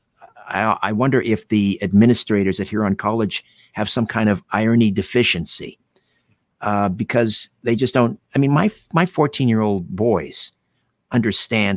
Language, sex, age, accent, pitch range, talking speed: English, male, 50-69, American, 100-120 Hz, 150 wpm